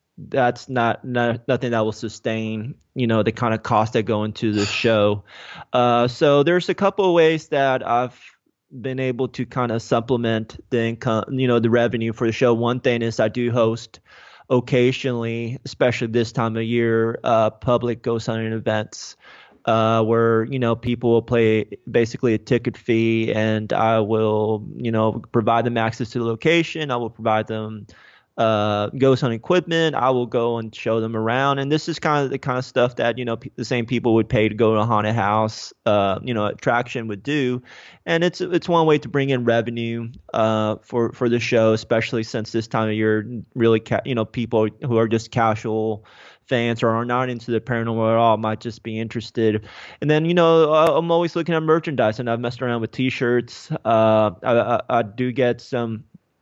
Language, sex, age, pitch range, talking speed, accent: English, male, 20-39, 110-125 Hz, 200 wpm, American